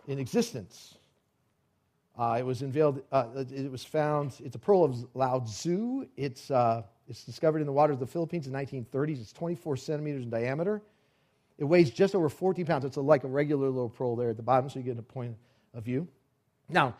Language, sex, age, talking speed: English, male, 40-59, 190 wpm